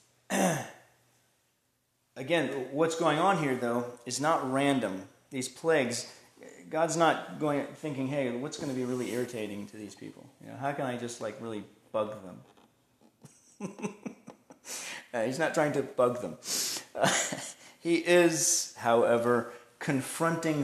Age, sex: 30-49, male